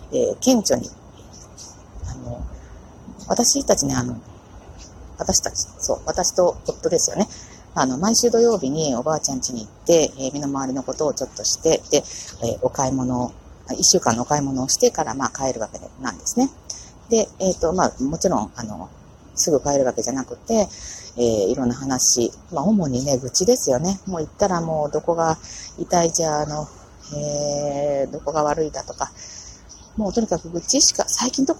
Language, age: Japanese, 40-59